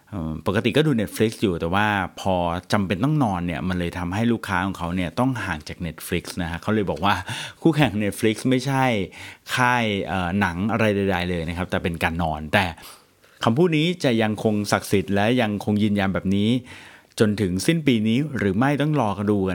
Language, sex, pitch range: Thai, male, 90-115 Hz